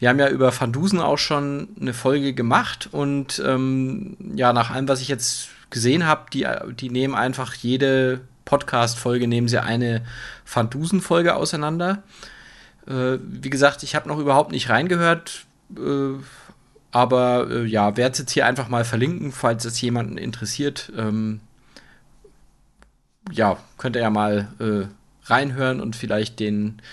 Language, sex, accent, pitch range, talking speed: German, male, German, 115-140 Hz, 145 wpm